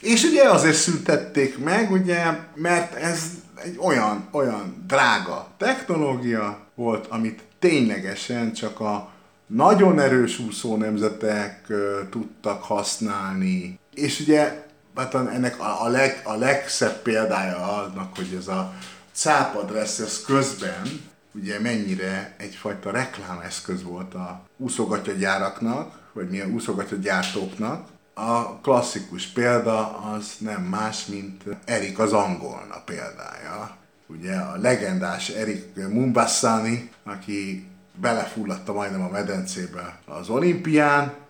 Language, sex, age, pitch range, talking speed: Hungarian, male, 50-69, 105-155 Hz, 110 wpm